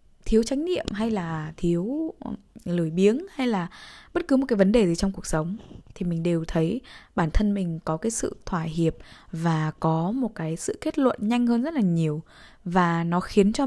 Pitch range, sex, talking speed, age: 170-225 Hz, female, 210 wpm, 10-29